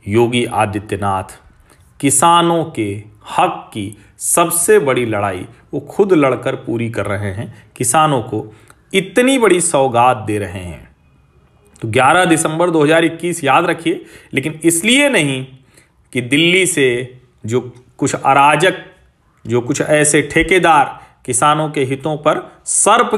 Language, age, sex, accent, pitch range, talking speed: Hindi, 40-59, male, native, 120-160 Hz, 125 wpm